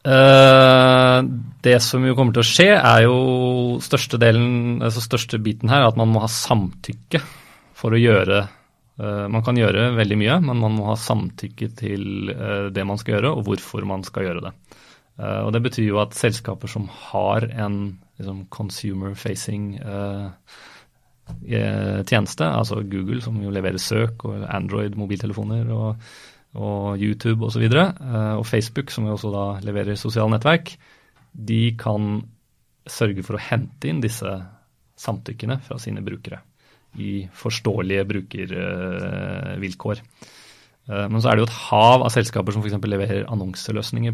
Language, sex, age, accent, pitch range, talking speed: English, male, 30-49, Swedish, 105-120 Hz, 150 wpm